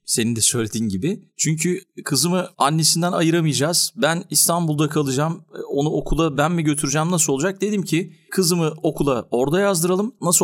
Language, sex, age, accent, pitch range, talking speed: Turkish, male, 40-59, native, 125-180 Hz, 145 wpm